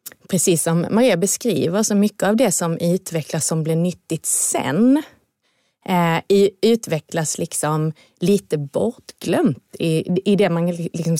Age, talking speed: 30-49, 130 wpm